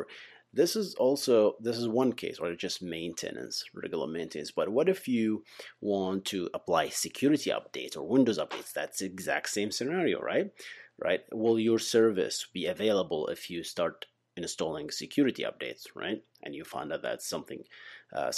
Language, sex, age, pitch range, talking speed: English, male, 30-49, 90-115 Hz, 170 wpm